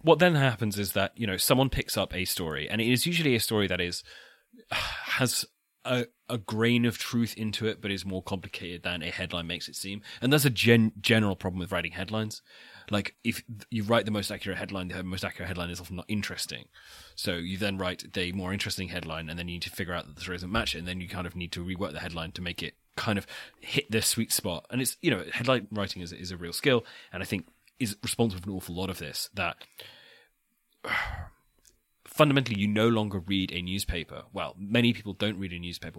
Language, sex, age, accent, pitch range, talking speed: English, male, 30-49, British, 90-110 Hz, 230 wpm